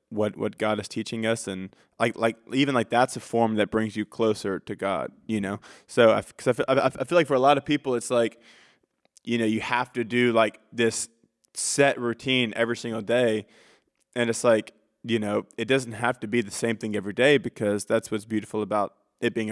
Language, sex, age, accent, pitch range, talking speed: English, male, 20-39, American, 105-125 Hz, 220 wpm